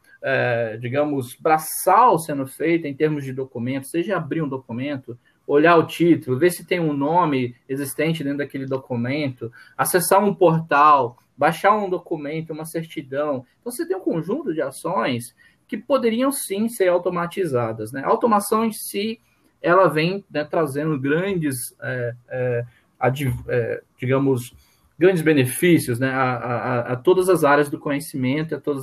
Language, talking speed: Portuguese, 155 wpm